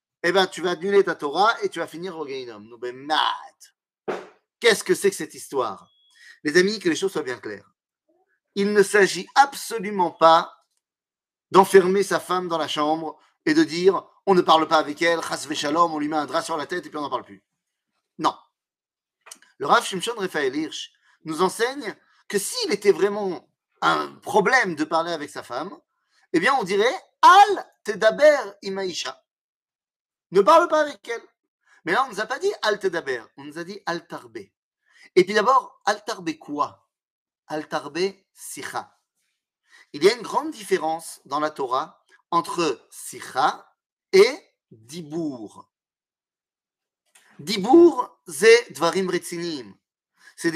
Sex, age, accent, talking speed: male, 30-49, French, 170 wpm